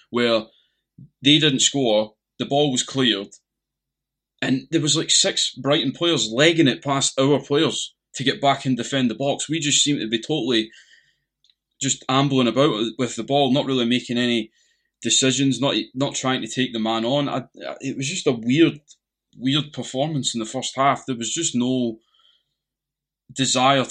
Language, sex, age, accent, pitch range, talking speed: English, male, 20-39, British, 115-140 Hz, 175 wpm